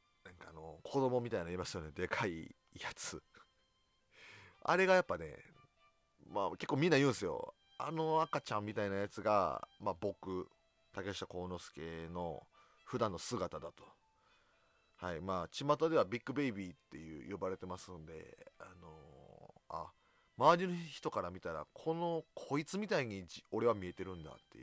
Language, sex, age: Japanese, male, 30-49